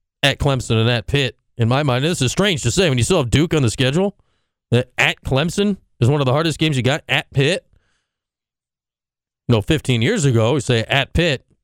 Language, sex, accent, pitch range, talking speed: English, male, American, 120-190 Hz, 230 wpm